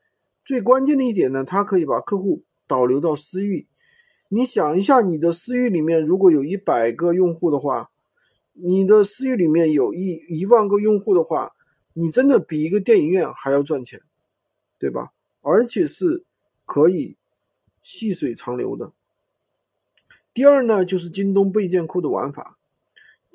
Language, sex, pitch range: Chinese, male, 155-240 Hz